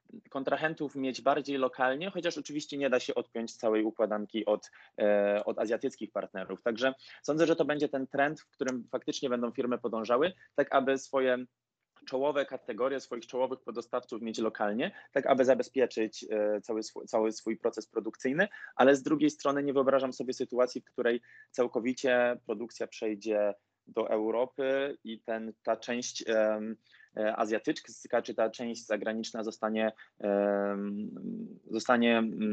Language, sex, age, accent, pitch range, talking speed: Polish, male, 20-39, native, 110-140 Hz, 135 wpm